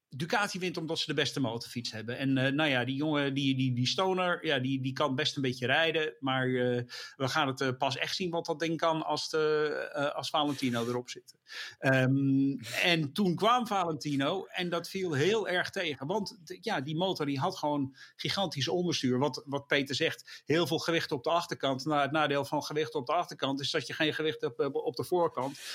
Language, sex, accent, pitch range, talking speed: English, male, Dutch, 135-165 Hz, 220 wpm